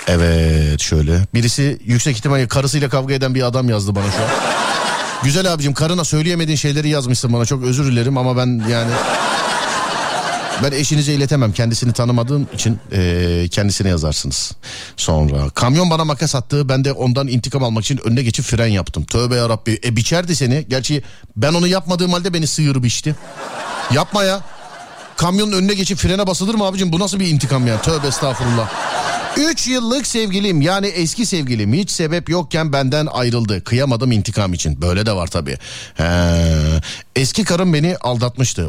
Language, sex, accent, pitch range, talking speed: Turkish, male, native, 115-160 Hz, 160 wpm